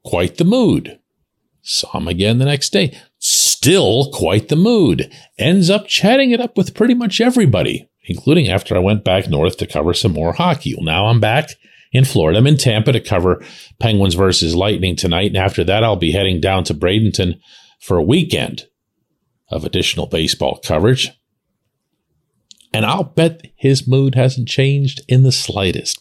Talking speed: 170 wpm